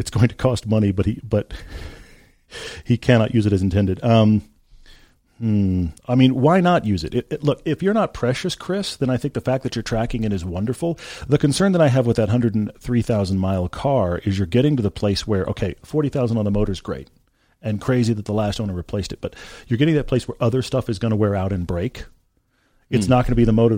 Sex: male